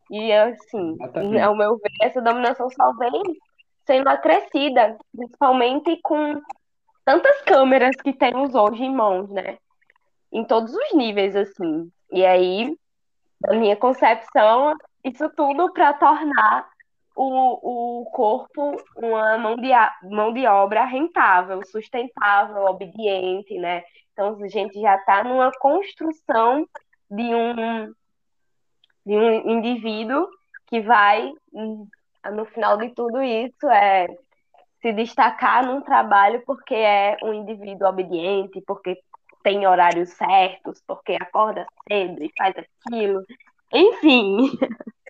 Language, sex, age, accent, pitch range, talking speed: Portuguese, female, 10-29, Brazilian, 210-290 Hz, 115 wpm